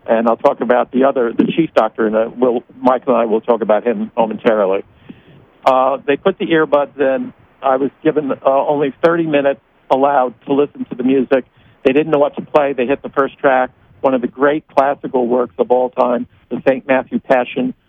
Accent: American